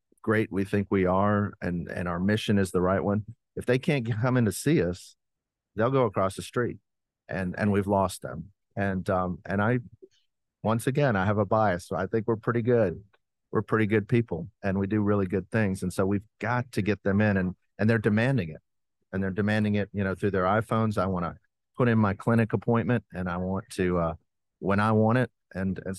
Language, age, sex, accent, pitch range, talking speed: English, 40-59, male, American, 95-120 Hz, 225 wpm